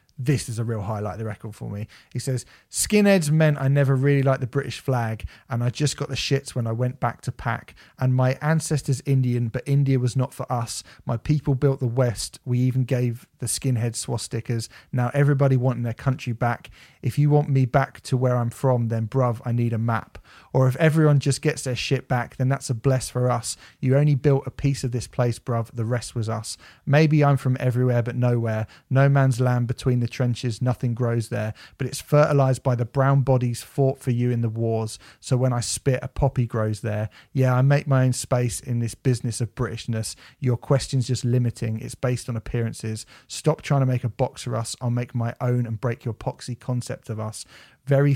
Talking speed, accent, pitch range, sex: 220 wpm, British, 115-135 Hz, male